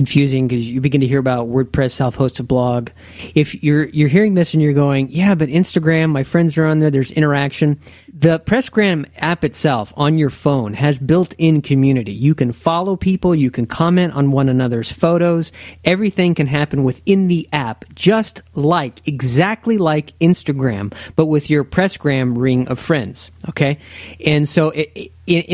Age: 40-59